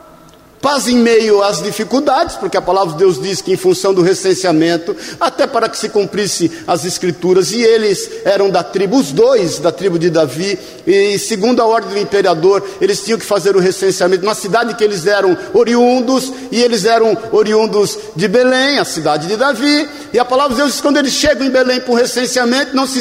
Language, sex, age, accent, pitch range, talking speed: Portuguese, male, 50-69, Brazilian, 195-285 Hz, 205 wpm